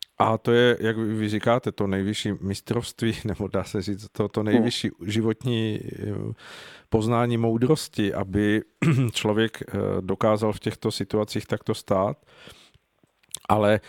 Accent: native